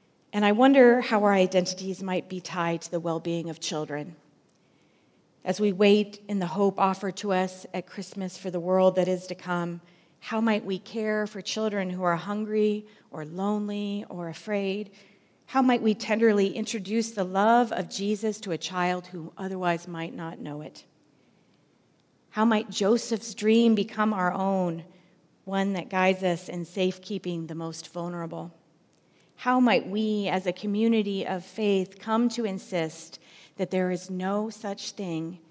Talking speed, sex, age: 160 wpm, female, 40-59